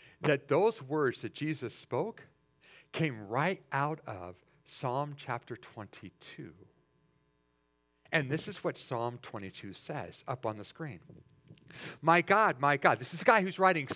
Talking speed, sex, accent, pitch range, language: 145 wpm, male, American, 135-185 Hz, English